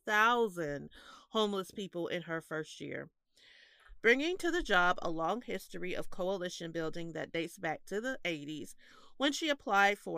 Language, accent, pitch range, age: English, American, 165-225 Hz, 40-59